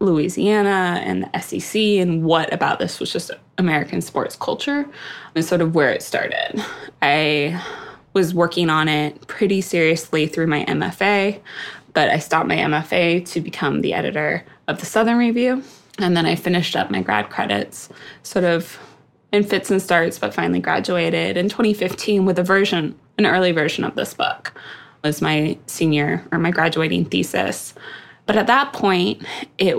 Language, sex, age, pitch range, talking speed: English, female, 20-39, 160-190 Hz, 165 wpm